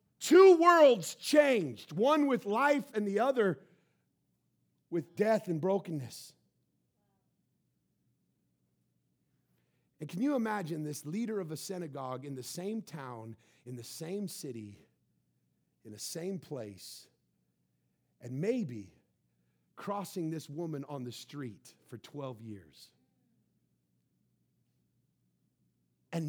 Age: 40-59